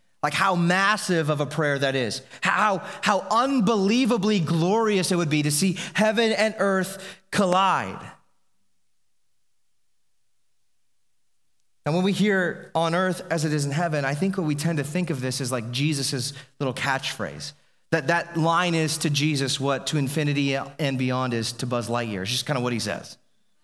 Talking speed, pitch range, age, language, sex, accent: 175 wpm, 145-200 Hz, 30-49, English, male, American